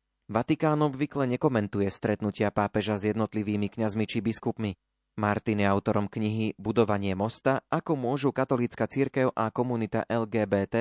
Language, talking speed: Slovak, 130 wpm